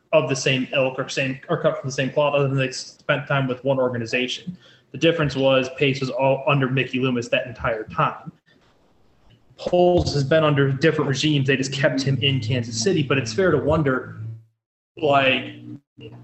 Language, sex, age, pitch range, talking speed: English, male, 20-39, 130-160 Hz, 190 wpm